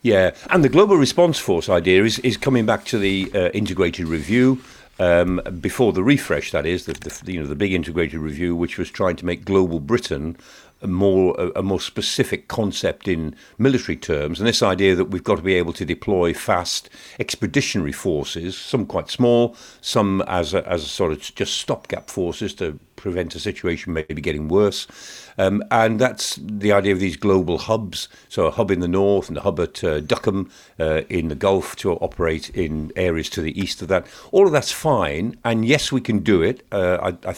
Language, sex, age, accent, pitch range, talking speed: English, male, 50-69, British, 90-125 Hz, 205 wpm